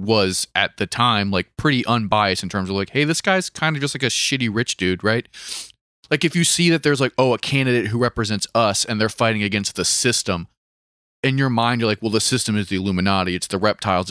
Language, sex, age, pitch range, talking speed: English, male, 30-49, 100-125 Hz, 240 wpm